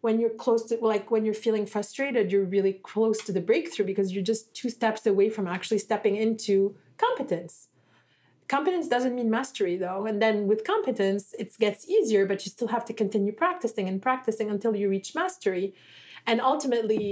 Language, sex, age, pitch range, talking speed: English, female, 30-49, 195-230 Hz, 185 wpm